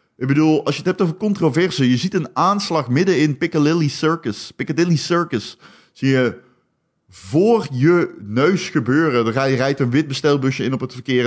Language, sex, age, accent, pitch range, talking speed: Dutch, male, 20-39, Dutch, 115-155 Hz, 180 wpm